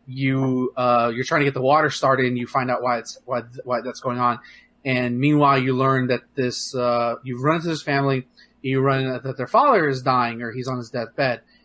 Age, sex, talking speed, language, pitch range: 30-49, male, 230 wpm, English, 130-150 Hz